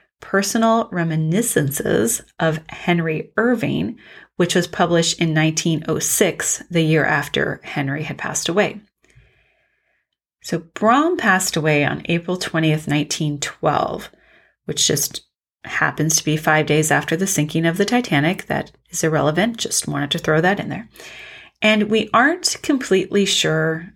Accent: American